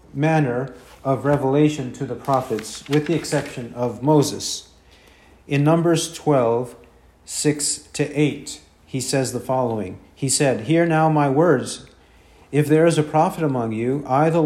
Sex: male